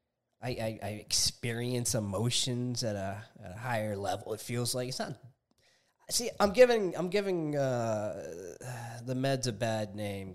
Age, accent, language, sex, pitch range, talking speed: 20-39, American, English, male, 110-140 Hz, 150 wpm